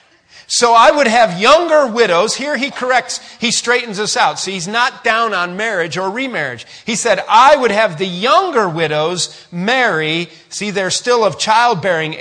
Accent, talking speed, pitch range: American, 170 wpm, 140-210 Hz